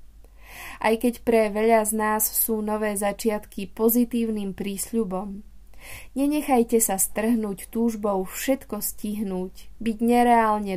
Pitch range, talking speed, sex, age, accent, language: 190-235 Hz, 105 wpm, female, 20-39, native, Czech